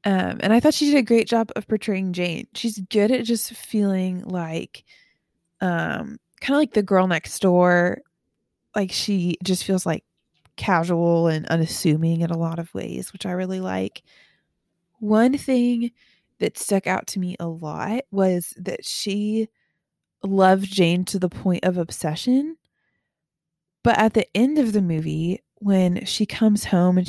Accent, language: American, English